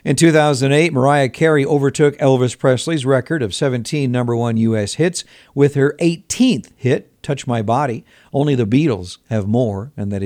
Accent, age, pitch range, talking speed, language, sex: American, 60-79, 115-145 Hz, 165 wpm, English, male